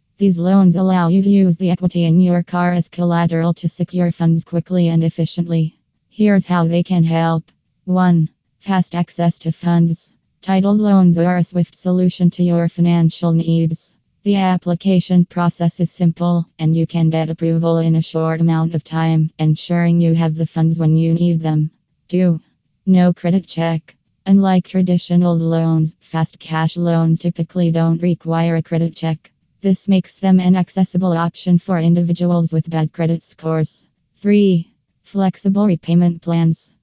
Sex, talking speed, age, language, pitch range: female, 155 wpm, 20-39, English, 165-180 Hz